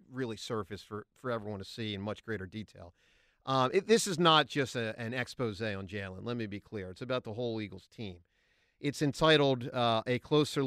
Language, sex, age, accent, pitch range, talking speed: English, male, 40-59, American, 105-145 Hz, 210 wpm